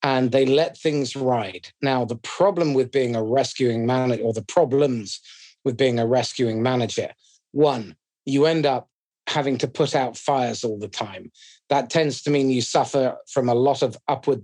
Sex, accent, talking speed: male, British, 185 wpm